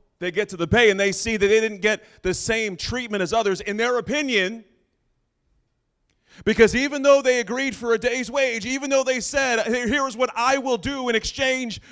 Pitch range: 195-250 Hz